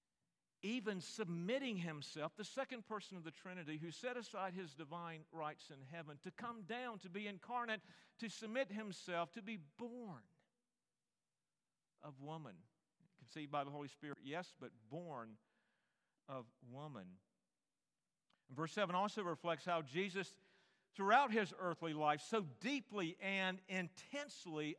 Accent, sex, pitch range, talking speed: American, male, 155-200 Hz, 135 wpm